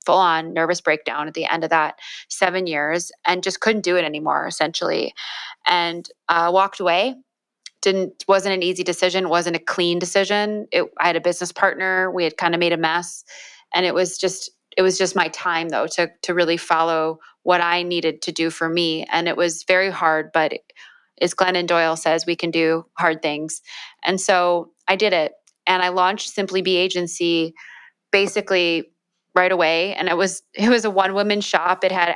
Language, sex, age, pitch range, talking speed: English, female, 20-39, 165-185 Hz, 200 wpm